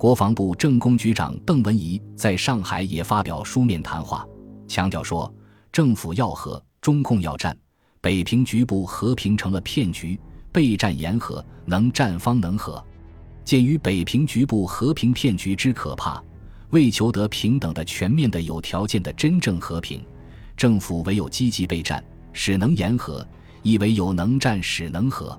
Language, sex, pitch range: Chinese, male, 85-115 Hz